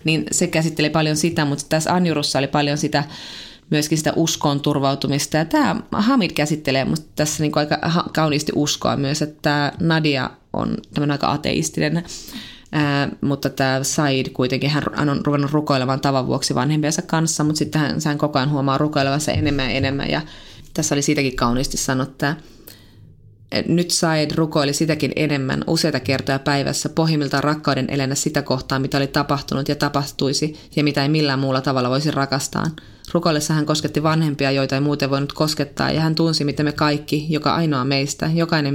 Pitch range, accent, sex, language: 135-155 Hz, native, female, Finnish